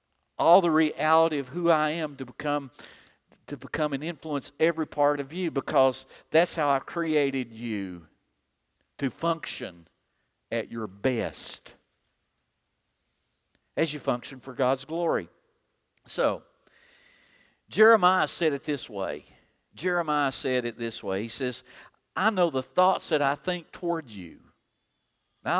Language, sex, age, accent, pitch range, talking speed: English, male, 50-69, American, 130-175 Hz, 135 wpm